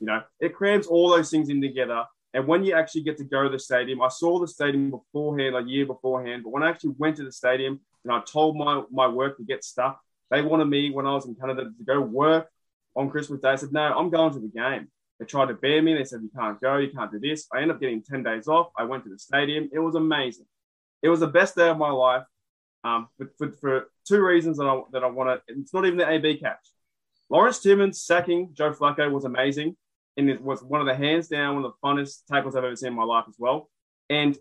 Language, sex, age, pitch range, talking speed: English, male, 20-39, 130-155 Hz, 255 wpm